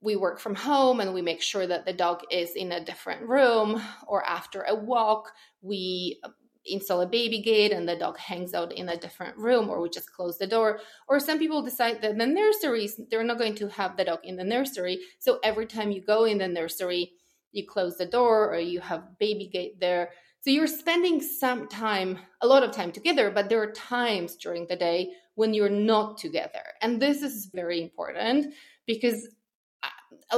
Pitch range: 185-235 Hz